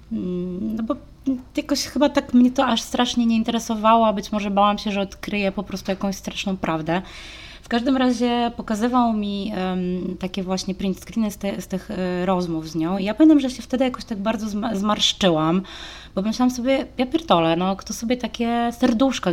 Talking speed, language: 190 wpm, Polish